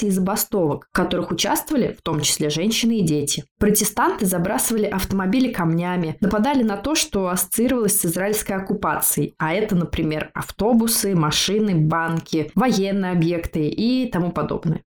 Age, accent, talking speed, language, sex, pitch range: 20-39, native, 135 wpm, Russian, female, 165-215 Hz